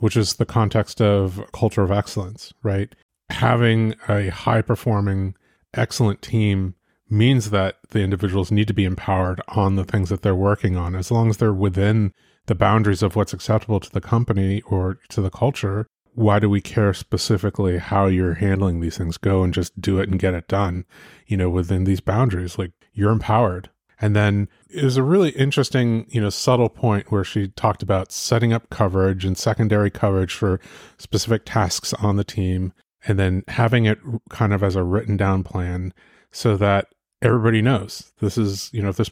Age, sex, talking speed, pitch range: 30-49, male, 185 wpm, 95-115 Hz